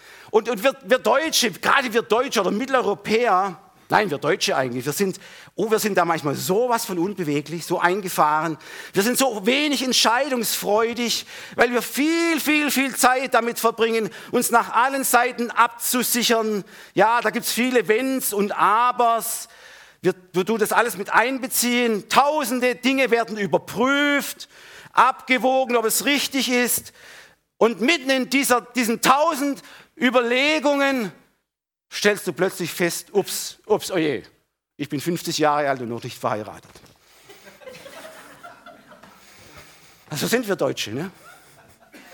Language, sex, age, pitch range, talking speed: German, male, 50-69, 185-255 Hz, 140 wpm